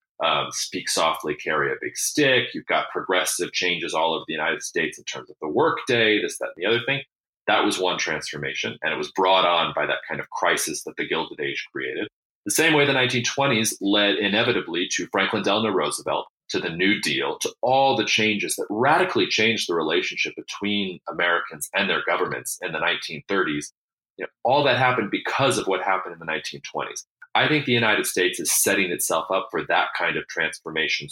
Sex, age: male, 30-49